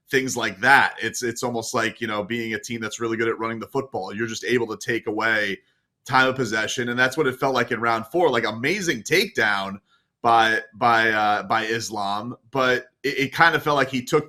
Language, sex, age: English, male, 30-49